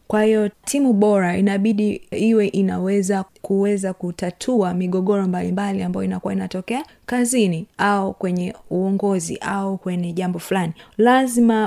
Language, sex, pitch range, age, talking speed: Swahili, female, 190-235 Hz, 20-39, 120 wpm